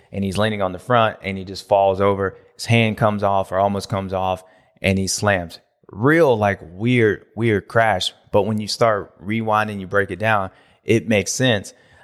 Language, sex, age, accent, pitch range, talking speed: English, male, 30-49, American, 95-110 Hz, 195 wpm